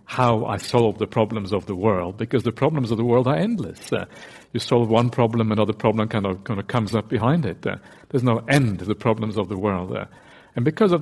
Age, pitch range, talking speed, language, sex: 60-79, 105-135 Hz, 245 wpm, English, male